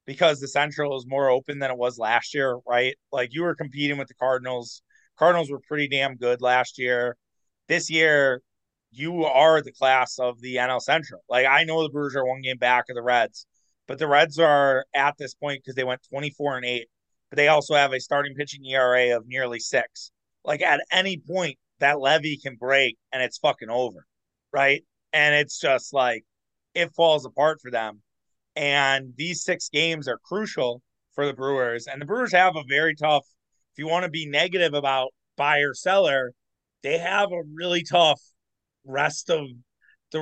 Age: 30-49